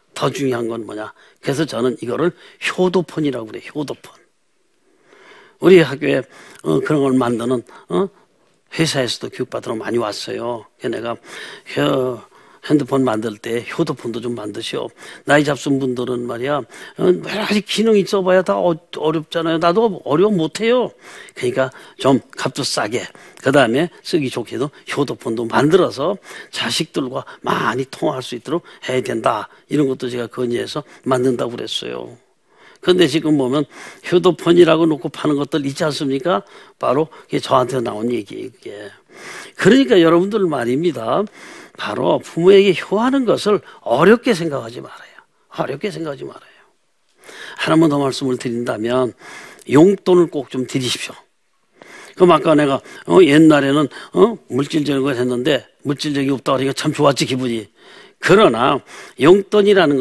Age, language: 40-59, Korean